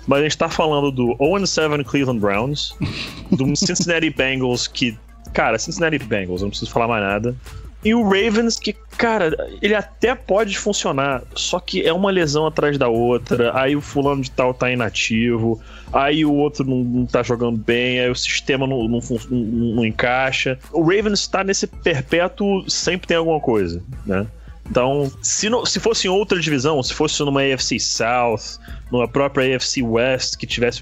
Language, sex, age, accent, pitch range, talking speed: Portuguese, male, 20-39, Brazilian, 115-155 Hz, 175 wpm